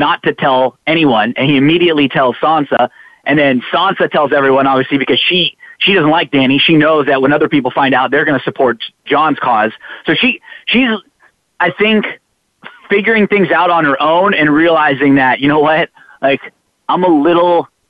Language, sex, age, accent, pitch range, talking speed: English, male, 30-49, American, 150-210 Hz, 190 wpm